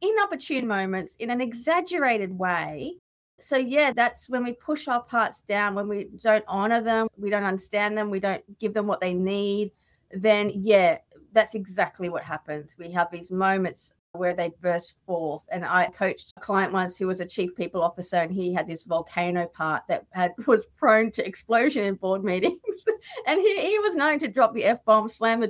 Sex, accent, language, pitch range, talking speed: female, Australian, English, 170-225 Hz, 195 wpm